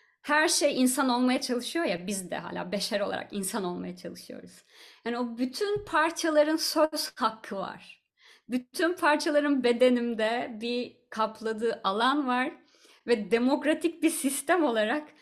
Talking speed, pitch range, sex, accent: 130 wpm, 195-260 Hz, female, native